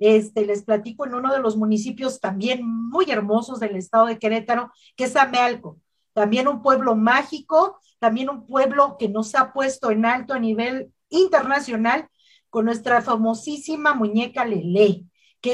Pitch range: 225-295 Hz